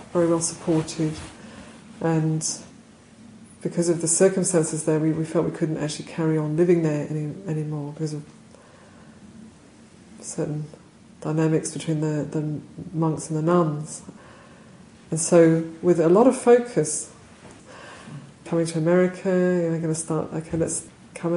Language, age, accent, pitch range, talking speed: English, 40-59, British, 155-170 Hz, 140 wpm